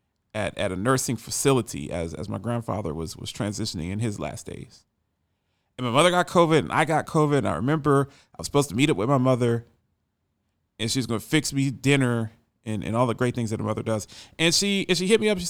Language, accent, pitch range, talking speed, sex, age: English, American, 105-140 Hz, 240 wpm, male, 30-49